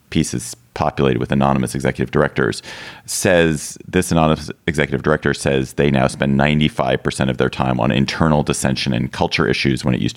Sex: male